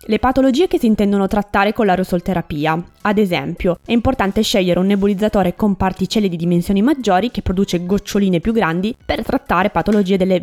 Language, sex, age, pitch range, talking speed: Italian, female, 20-39, 180-220 Hz, 165 wpm